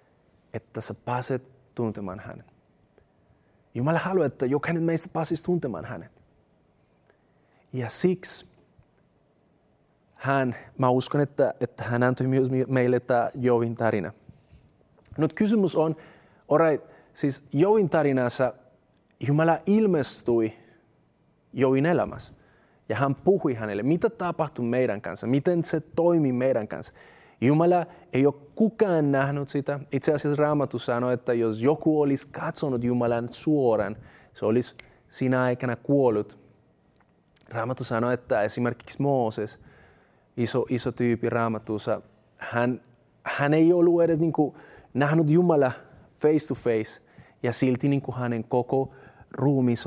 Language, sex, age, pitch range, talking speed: Finnish, male, 30-49, 120-155 Hz, 120 wpm